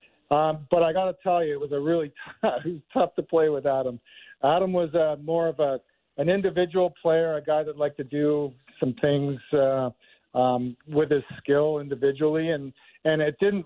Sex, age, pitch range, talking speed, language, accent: male, 50-69, 140-165 Hz, 200 wpm, English, American